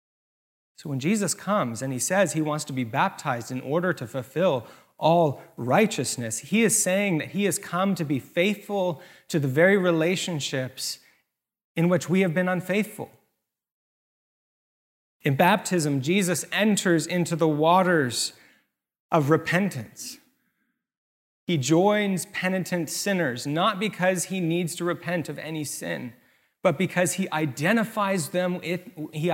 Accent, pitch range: American, 150-190 Hz